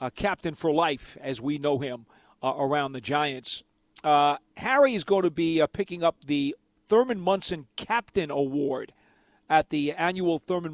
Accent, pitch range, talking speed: American, 135-160 Hz, 170 wpm